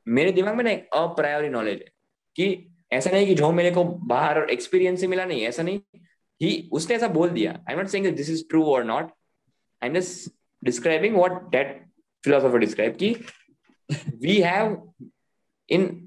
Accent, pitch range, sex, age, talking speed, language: native, 140-190 Hz, male, 20-39, 175 wpm, Hindi